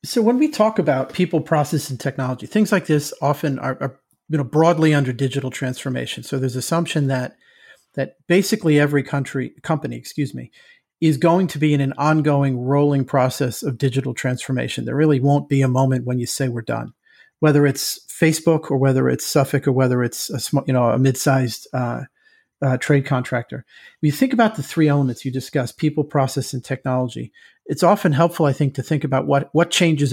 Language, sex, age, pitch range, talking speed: English, male, 40-59, 130-155 Hz, 200 wpm